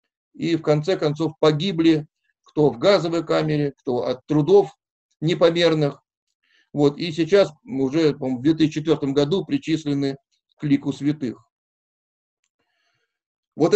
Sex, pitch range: male, 150-180 Hz